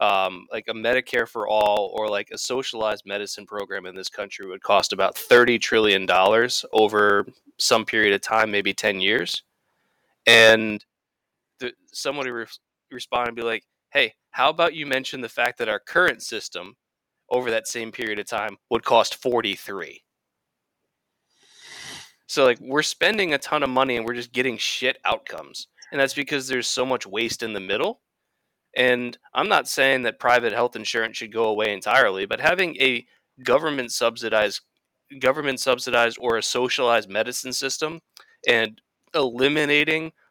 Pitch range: 115-135 Hz